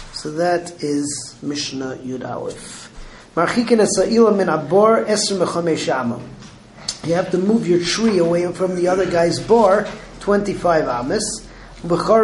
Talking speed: 85 wpm